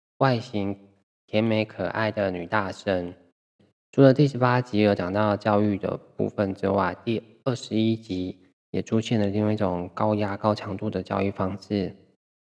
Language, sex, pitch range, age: Chinese, male, 95-115 Hz, 20-39